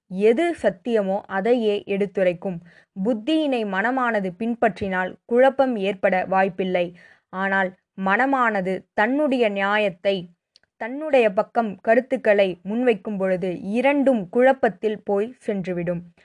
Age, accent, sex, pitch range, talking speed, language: 20-39, native, female, 195-245 Hz, 85 wpm, Tamil